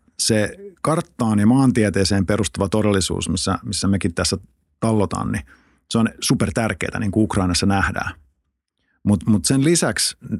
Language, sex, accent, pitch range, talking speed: Finnish, male, native, 95-120 Hz, 135 wpm